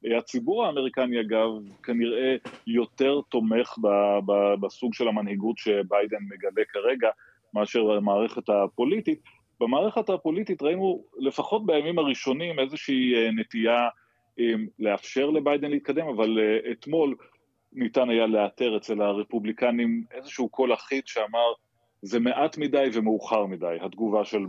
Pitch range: 105-145 Hz